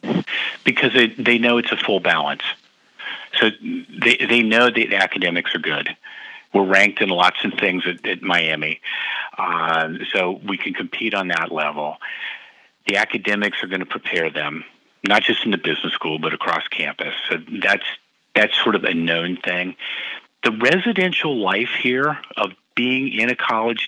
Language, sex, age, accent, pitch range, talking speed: English, male, 50-69, American, 90-110 Hz, 170 wpm